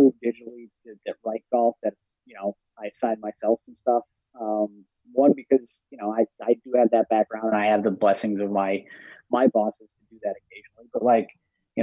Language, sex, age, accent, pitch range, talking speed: English, male, 30-49, American, 110-125 Hz, 210 wpm